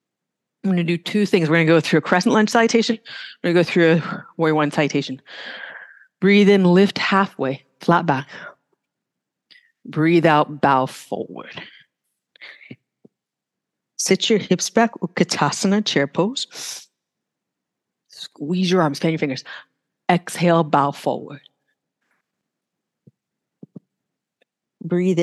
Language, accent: English, American